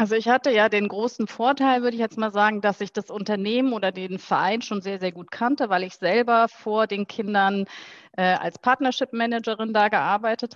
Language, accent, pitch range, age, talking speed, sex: German, German, 185-225 Hz, 30-49, 200 wpm, female